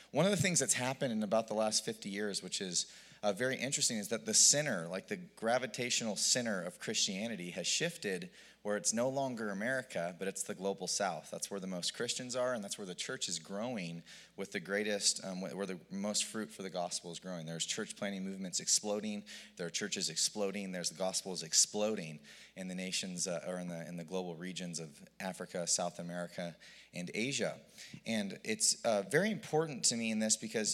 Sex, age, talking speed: male, 30-49, 205 wpm